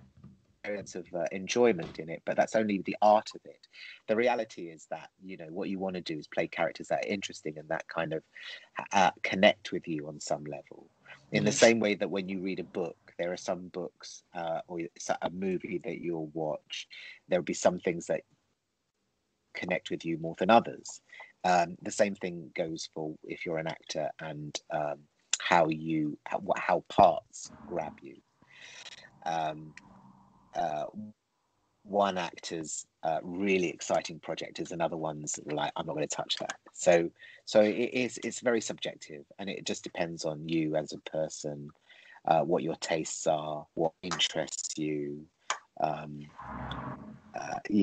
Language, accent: English, British